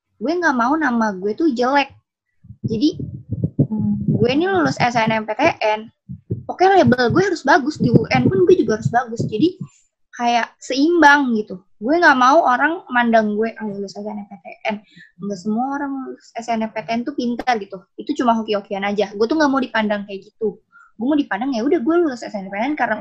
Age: 20-39